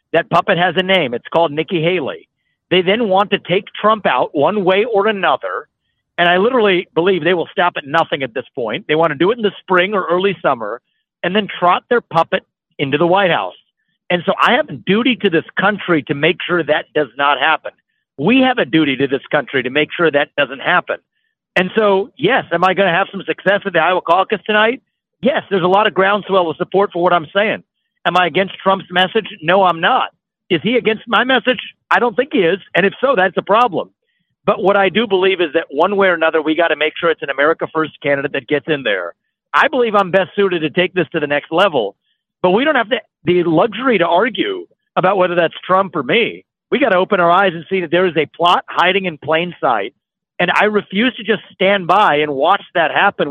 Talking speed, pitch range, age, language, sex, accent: 235 wpm, 170-205 Hz, 50-69, English, male, American